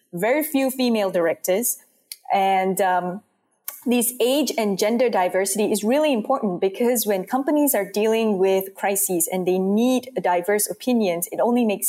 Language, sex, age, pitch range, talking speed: English, female, 20-39, 190-240 Hz, 145 wpm